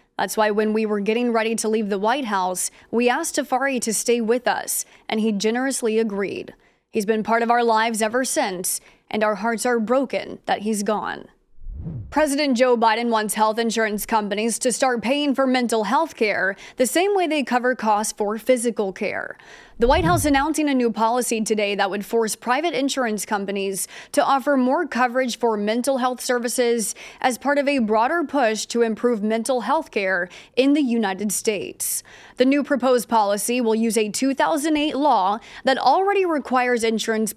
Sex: female